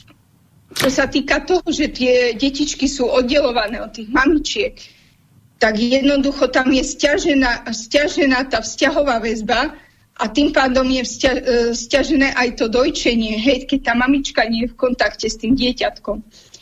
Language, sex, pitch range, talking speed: Slovak, female, 230-280 Hz, 145 wpm